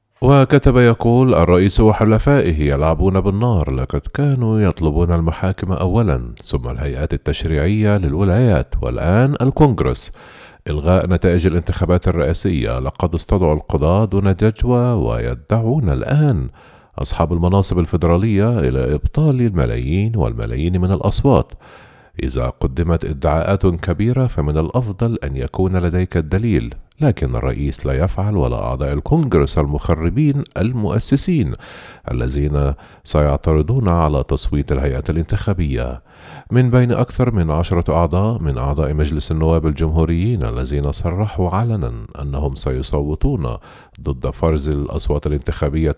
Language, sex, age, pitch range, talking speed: Arabic, male, 50-69, 75-105 Hz, 105 wpm